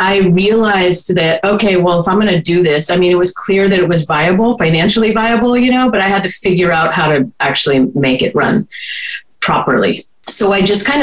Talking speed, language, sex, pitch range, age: 225 wpm, English, female, 160-210 Hz, 30-49